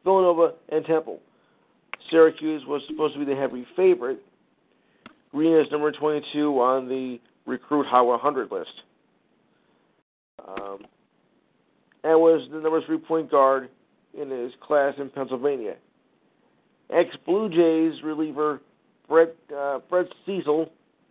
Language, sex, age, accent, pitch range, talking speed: English, male, 50-69, American, 145-175 Hz, 115 wpm